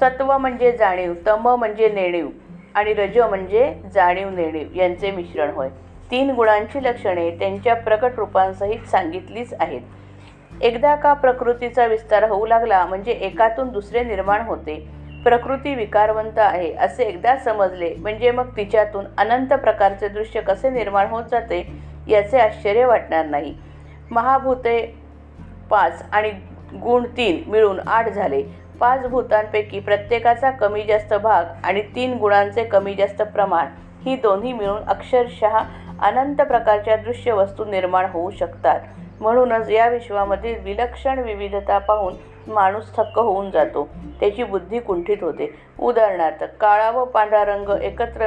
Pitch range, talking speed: 195-235 Hz, 130 wpm